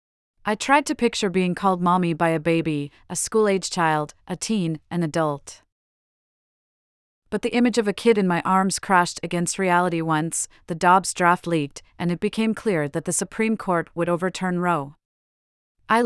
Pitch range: 165-200 Hz